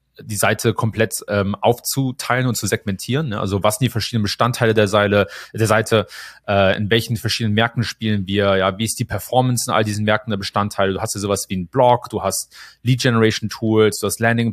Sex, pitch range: male, 105-120 Hz